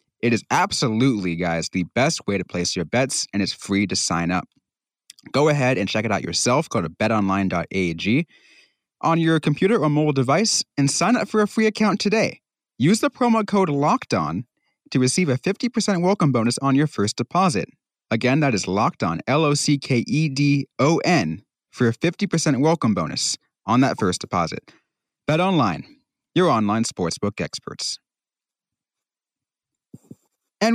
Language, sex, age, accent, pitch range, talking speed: English, male, 30-49, American, 105-170 Hz, 150 wpm